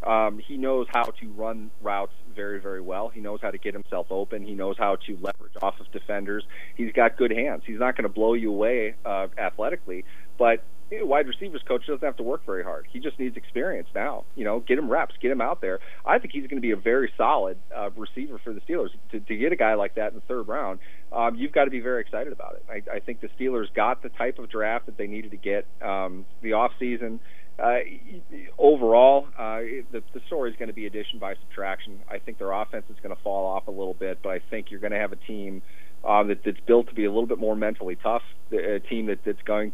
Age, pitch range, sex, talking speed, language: 30-49, 100-115 Hz, male, 250 wpm, English